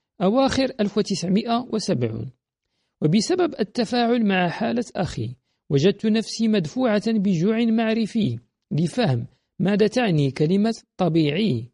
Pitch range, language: 155-235 Hz, Arabic